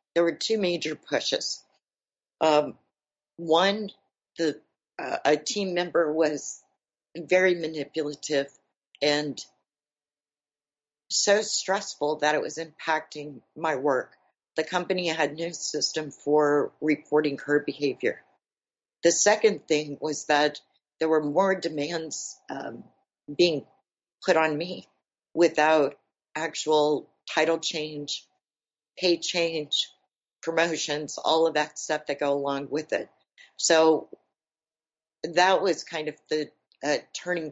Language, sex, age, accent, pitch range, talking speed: English, female, 50-69, American, 145-165 Hz, 115 wpm